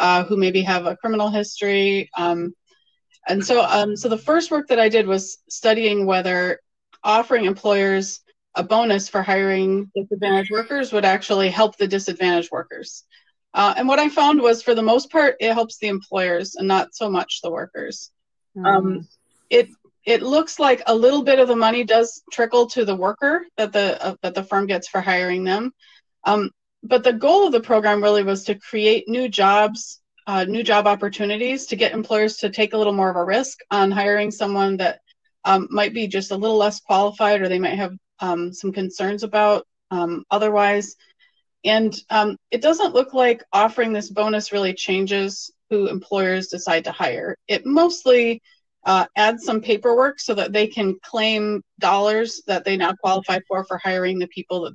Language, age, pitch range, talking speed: English, 30-49, 195-230 Hz, 185 wpm